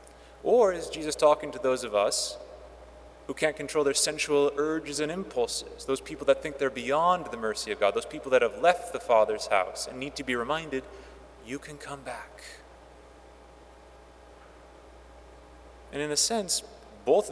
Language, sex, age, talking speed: English, male, 30-49, 165 wpm